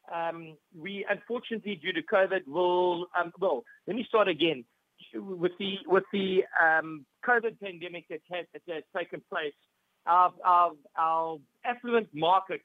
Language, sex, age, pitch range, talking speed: English, male, 50-69, 165-200 Hz, 145 wpm